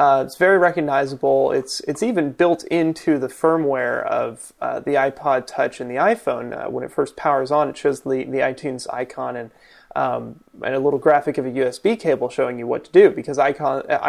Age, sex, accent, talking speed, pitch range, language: 30-49, male, American, 210 wpm, 135-175 Hz, English